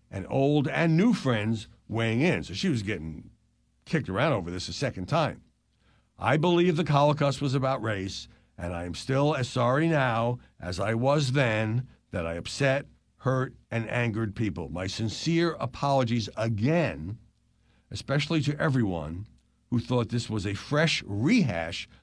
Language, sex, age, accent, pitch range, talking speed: English, male, 60-79, American, 90-135 Hz, 155 wpm